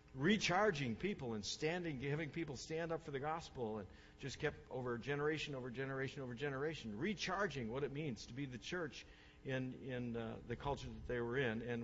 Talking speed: 195 wpm